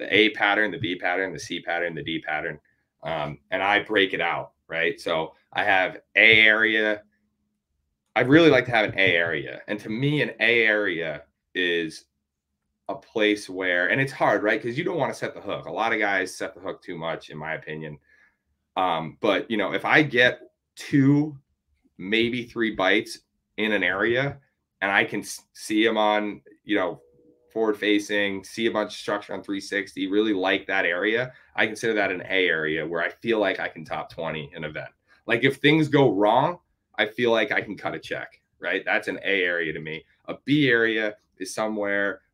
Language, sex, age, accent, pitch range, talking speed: English, male, 30-49, American, 95-115 Hz, 200 wpm